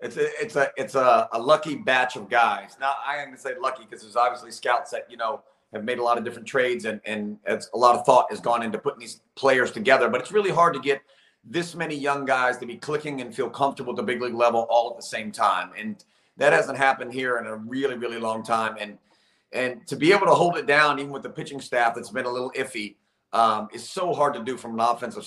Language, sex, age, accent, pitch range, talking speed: English, male, 40-59, American, 115-140 Hz, 265 wpm